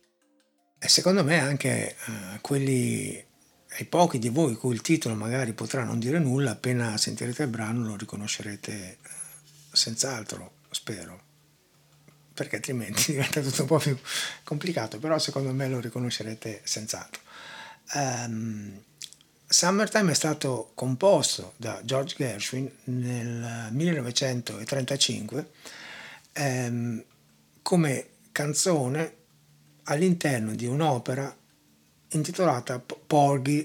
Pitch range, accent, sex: 120-155 Hz, native, male